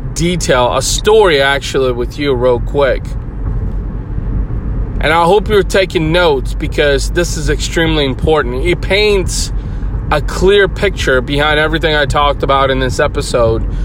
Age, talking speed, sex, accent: 30-49, 140 wpm, male, American